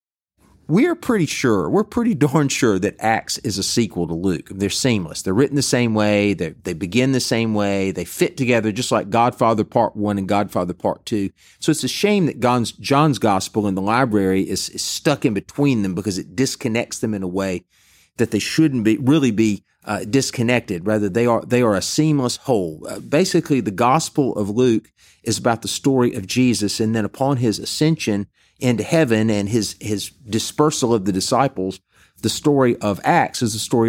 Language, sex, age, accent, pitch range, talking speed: English, male, 40-59, American, 105-130 Hz, 195 wpm